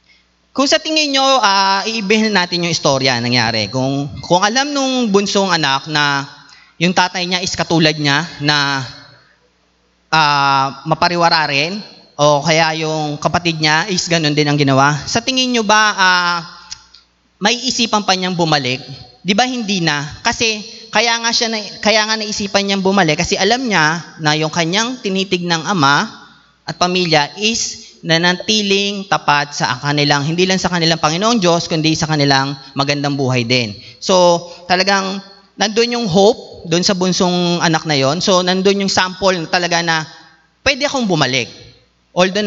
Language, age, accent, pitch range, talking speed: Filipino, 30-49, native, 150-195 Hz, 160 wpm